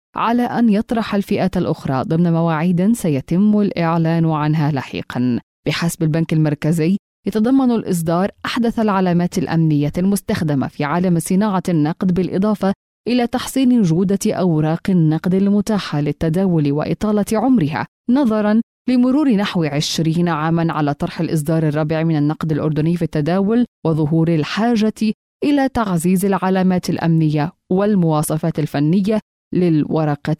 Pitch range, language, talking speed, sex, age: 160-210 Hz, Arabic, 115 wpm, female, 20-39